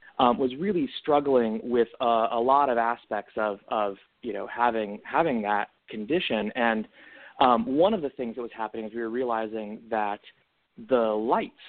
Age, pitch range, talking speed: 30-49, 110-135 Hz, 175 wpm